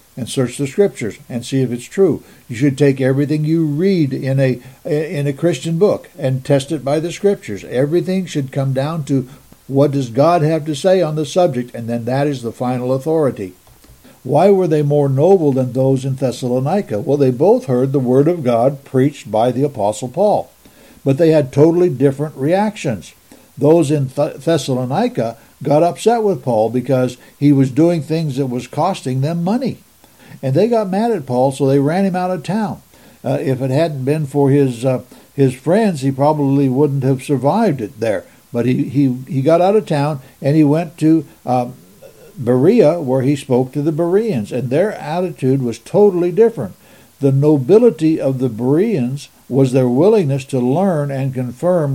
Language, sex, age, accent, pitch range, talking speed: English, male, 60-79, American, 130-165 Hz, 185 wpm